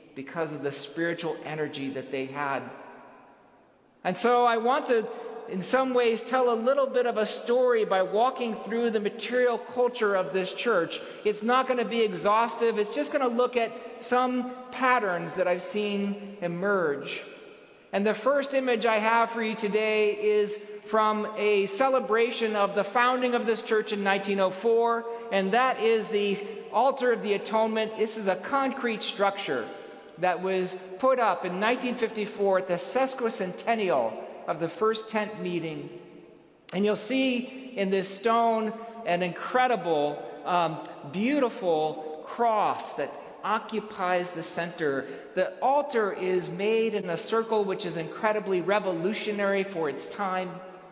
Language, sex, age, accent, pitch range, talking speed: English, male, 40-59, American, 185-235 Hz, 150 wpm